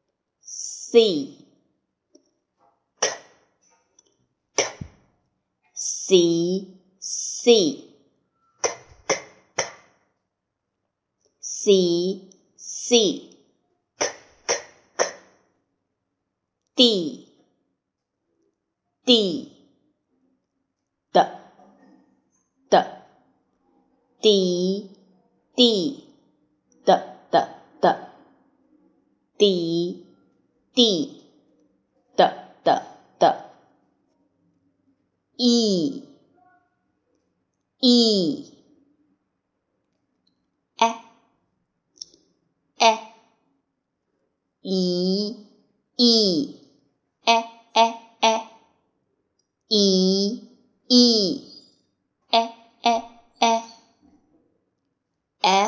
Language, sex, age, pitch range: Chinese, female, 30-49, 195-245 Hz